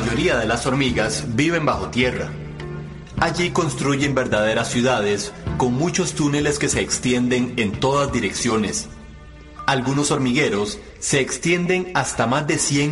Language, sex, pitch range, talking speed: Spanish, male, 105-145 Hz, 135 wpm